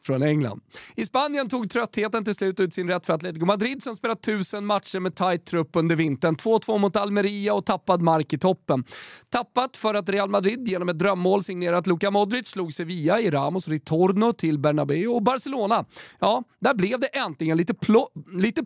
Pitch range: 165-230 Hz